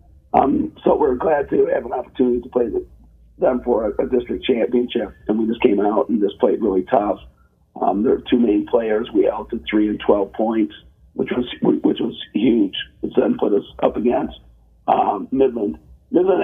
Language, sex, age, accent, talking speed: English, male, 50-69, American, 190 wpm